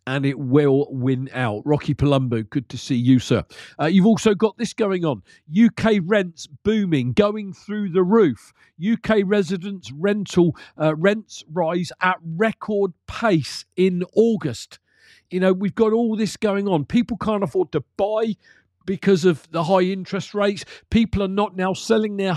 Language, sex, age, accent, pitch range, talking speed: English, male, 40-59, British, 155-195 Hz, 165 wpm